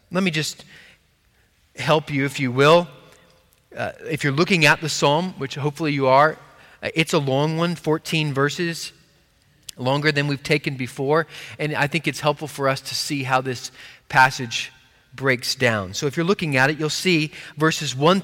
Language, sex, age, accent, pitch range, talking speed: English, male, 30-49, American, 135-170 Hz, 180 wpm